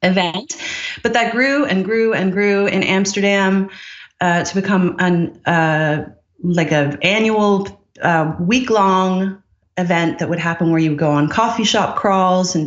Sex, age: female, 30-49